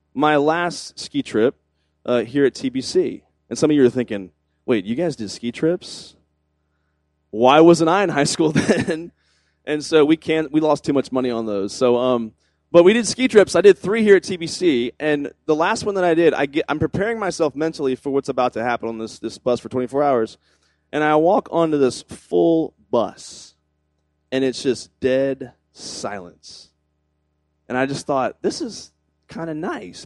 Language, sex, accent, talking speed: English, male, American, 195 wpm